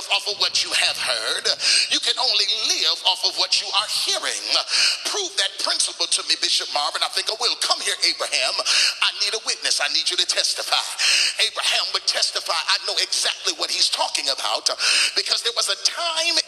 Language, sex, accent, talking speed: English, male, American, 195 wpm